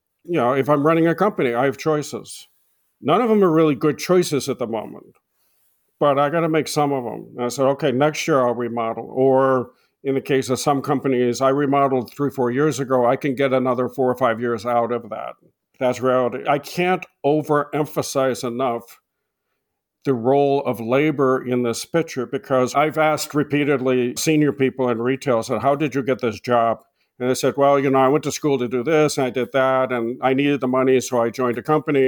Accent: American